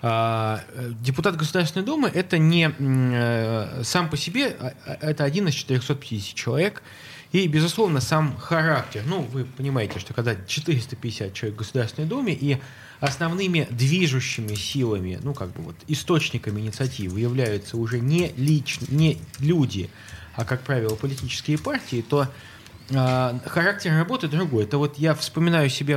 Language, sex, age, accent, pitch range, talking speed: Russian, male, 20-39, native, 115-155 Hz, 135 wpm